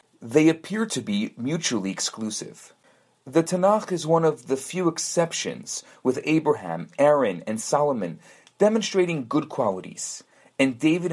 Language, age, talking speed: English, 30-49, 130 wpm